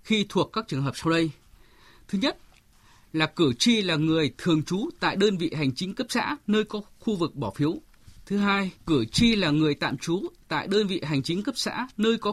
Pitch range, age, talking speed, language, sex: 145-210 Hz, 20-39, 225 wpm, Vietnamese, male